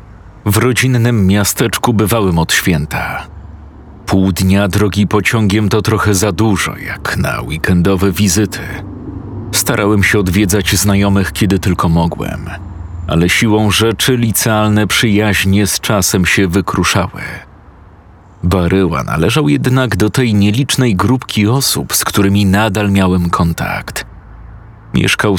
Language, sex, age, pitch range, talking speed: Polish, male, 40-59, 95-110 Hz, 115 wpm